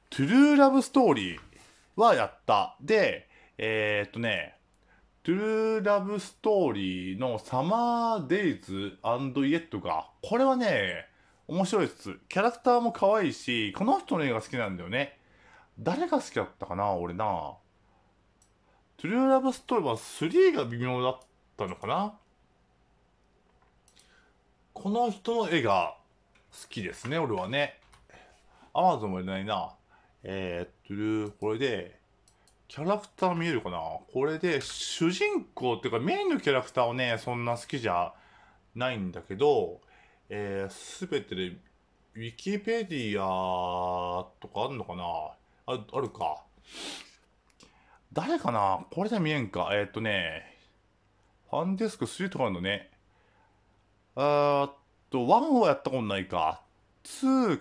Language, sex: Japanese, male